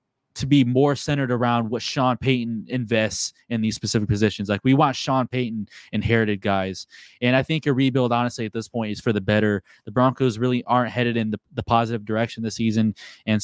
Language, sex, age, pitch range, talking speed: English, male, 20-39, 110-130 Hz, 205 wpm